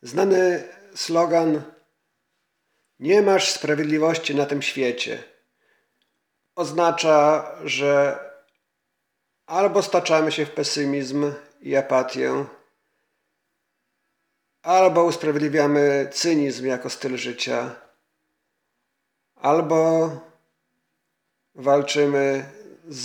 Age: 40-59